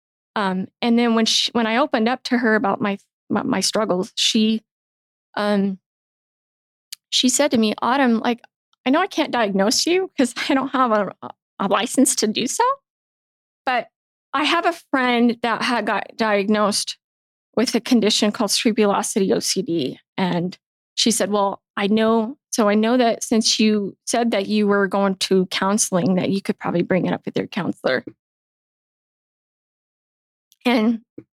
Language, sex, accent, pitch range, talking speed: English, female, American, 205-255 Hz, 160 wpm